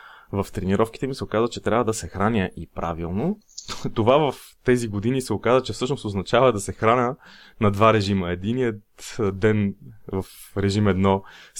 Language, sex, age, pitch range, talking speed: Bulgarian, male, 20-39, 100-120 Hz, 165 wpm